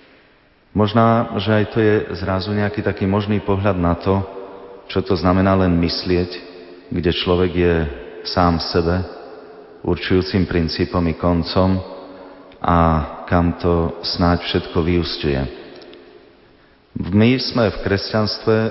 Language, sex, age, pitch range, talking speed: Slovak, male, 30-49, 85-95 Hz, 120 wpm